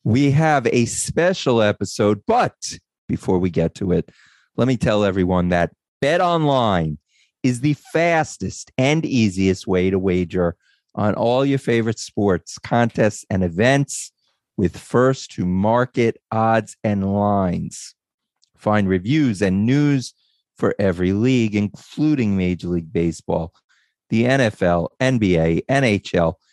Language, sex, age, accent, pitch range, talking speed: English, male, 40-59, American, 95-130 Hz, 125 wpm